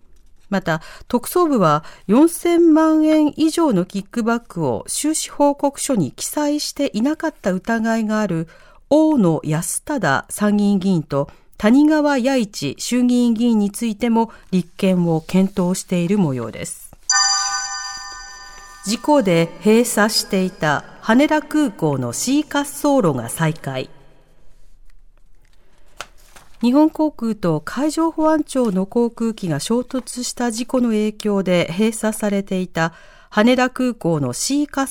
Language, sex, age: Japanese, female, 50-69